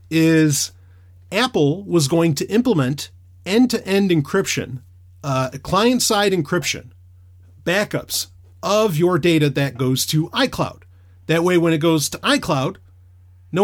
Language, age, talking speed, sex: English, 40-59, 120 wpm, male